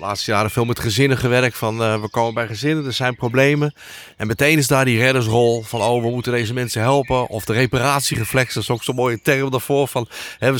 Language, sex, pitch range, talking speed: Dutch, male, 110-140 Hz, 230 wpm